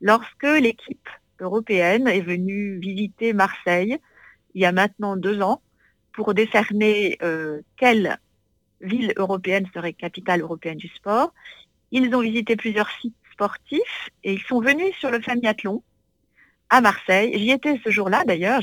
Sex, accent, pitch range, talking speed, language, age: female, French, 180-240 Hz, 140 wpm, French, 50-69